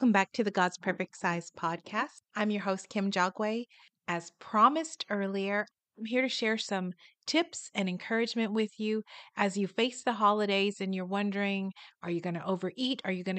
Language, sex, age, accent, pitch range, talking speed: English, female, 40-59, American, 190-235 Hz, 185 wpm